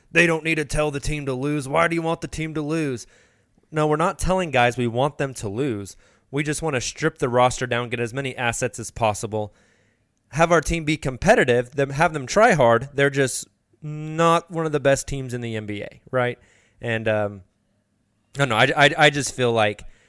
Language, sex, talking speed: English, male, 220 wpm